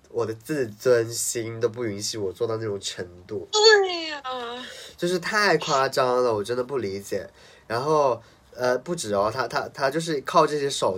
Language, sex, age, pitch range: Chinese, male, 20-39, 105-135 Hz